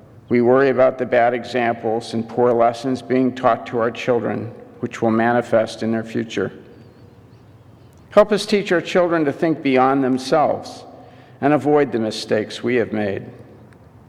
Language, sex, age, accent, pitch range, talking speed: English, male, 50-69, American, 115-135 Hz, 155 wpm